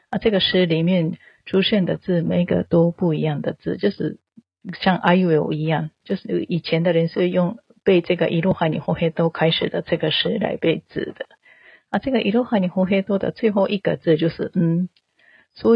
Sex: female